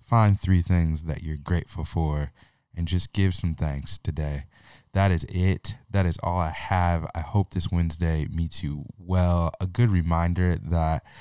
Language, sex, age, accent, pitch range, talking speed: English, male, 20-39, American, 80-95 Hz, 170 wpm